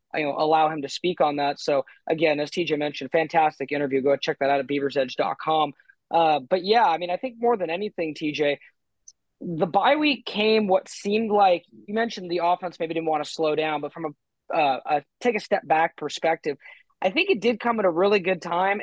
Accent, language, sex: American, English, male